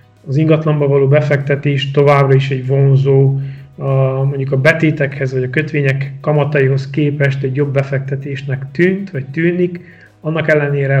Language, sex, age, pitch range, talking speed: Hungarian, male, 30-49, 135-145 Hz, 130 wpm